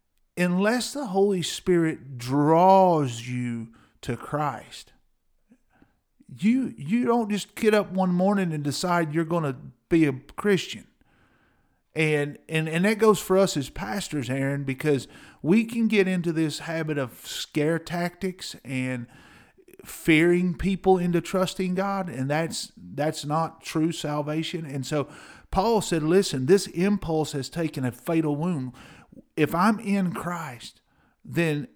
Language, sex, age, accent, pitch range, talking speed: English, male, 50-69, American, 140-175 Hz, 135 wpm